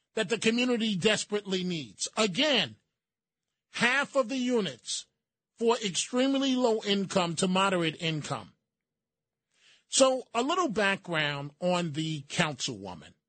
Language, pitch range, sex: English, 170-210 Hz, male